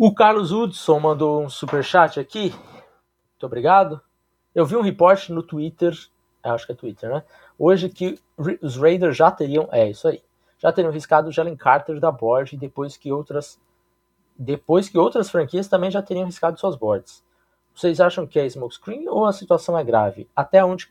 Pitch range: 120-175 Hz